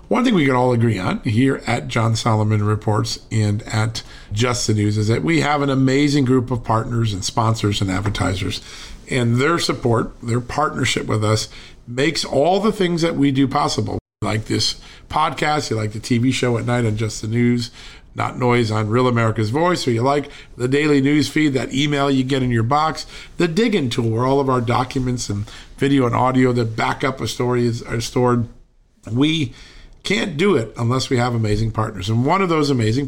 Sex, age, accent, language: male, 50-69, American, English